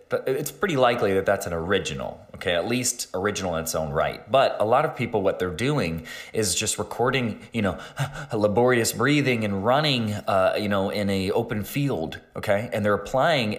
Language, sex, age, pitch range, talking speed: English, male, 20-39, 90-120 Hz, 195 wpm